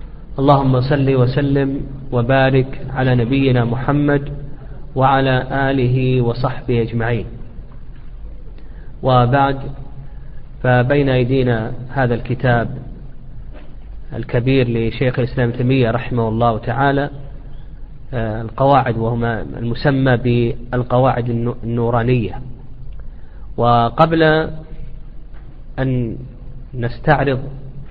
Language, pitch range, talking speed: Arabic, 120-140 Hz, 65 wpm